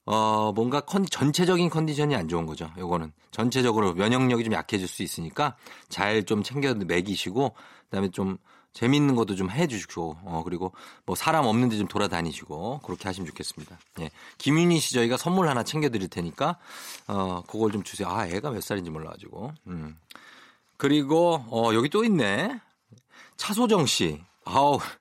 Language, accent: Korean, native